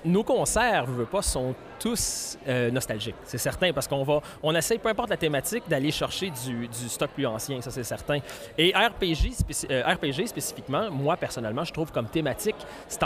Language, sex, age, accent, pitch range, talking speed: French, male, 30-49, Canadian, 125-165 Hz, 200 wpm